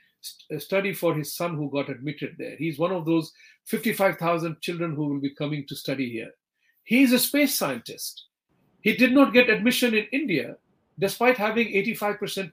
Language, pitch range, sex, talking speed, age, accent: English, 170-245 Hz, male, 170 wpm, 50-69, Indian